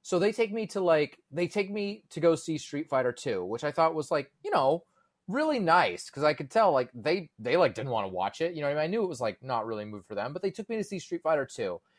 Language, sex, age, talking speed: English, male, 30-49, 310 wpm